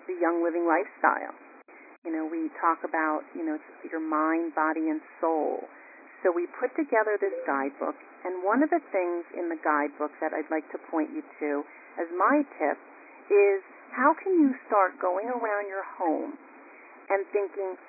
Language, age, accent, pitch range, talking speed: English, 50-69, American, 165-275 Hz, 170 wpm